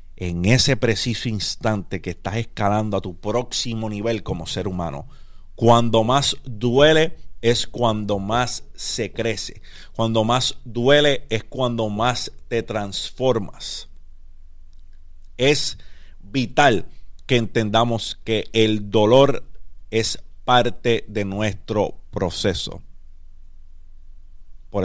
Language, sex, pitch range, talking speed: Spanish, male, 85-115 Hz, 105 wpm